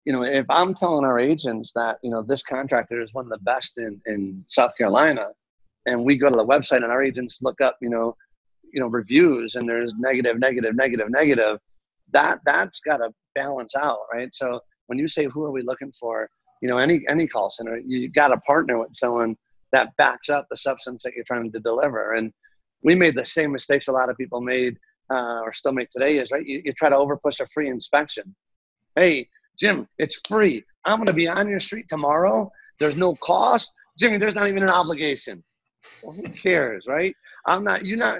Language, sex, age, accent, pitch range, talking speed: English, male, 30-49, American, 125-155 Hz, 215 wpm